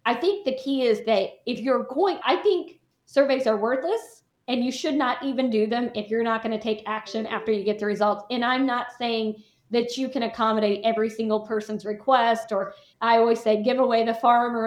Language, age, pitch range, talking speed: English, 40-59, 215-255 Hz, 220 wpm